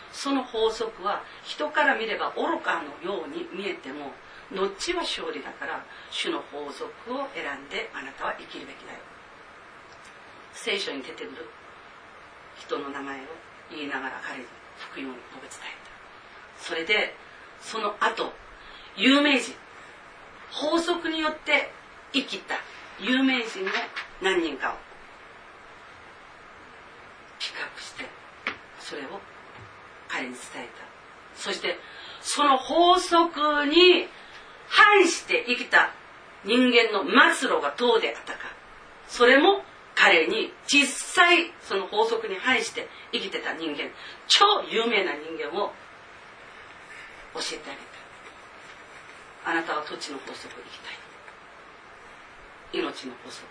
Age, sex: 40-59, female